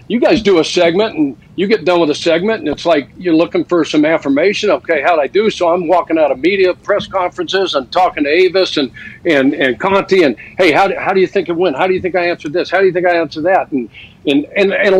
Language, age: English, 60-79